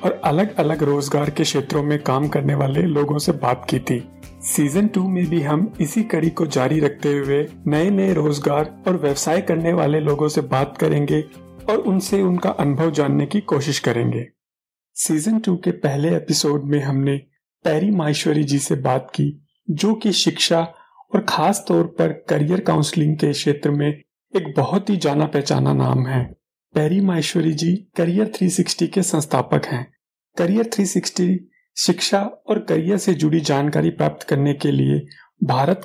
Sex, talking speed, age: male, 165 wpm, 40-59